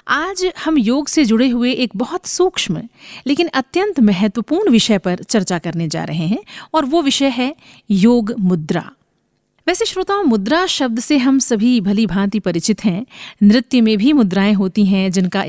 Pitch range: 200-290 Hz